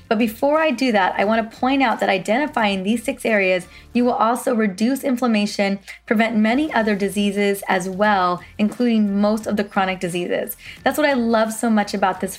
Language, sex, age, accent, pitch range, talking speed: English, female, 20-39, American, 200-235 Hz, 195 wpm